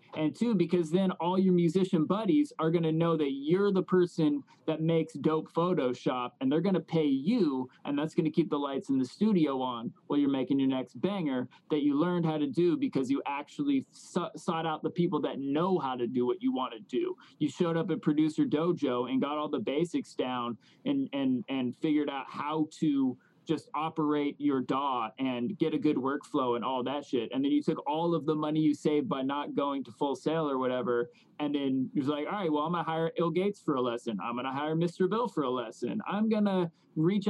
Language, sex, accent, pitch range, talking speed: English, male, American, 135-175 Hz, 235 wpm